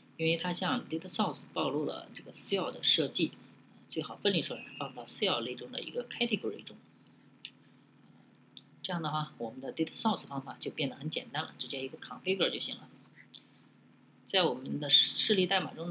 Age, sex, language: 20-39, female, Chinese